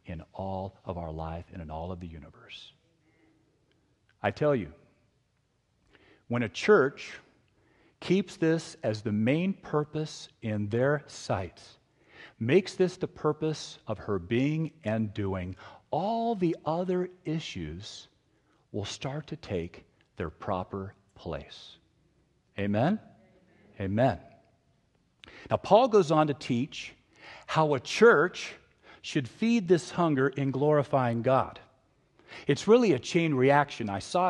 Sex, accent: male, American